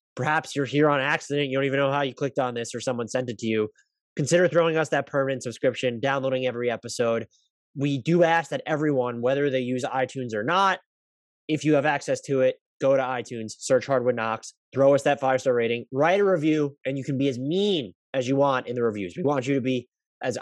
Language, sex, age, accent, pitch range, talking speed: English, male, 20-39, American, 120-150 Hz, 230 wpm